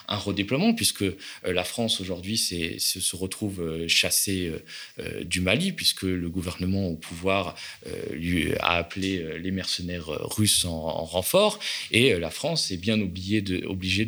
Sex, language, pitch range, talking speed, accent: male, French, 85-100 Hz, 135 wpm, French